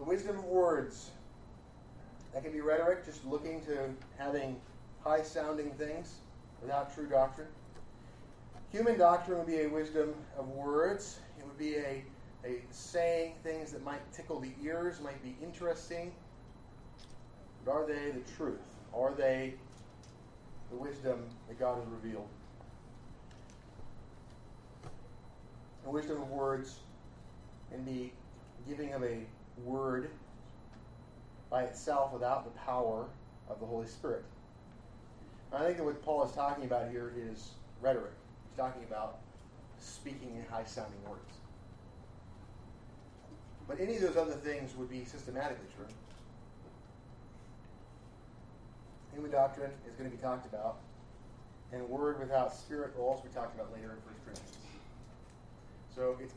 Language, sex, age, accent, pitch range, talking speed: English, male, 30-49, American, 120-145 Hz, 130 wpm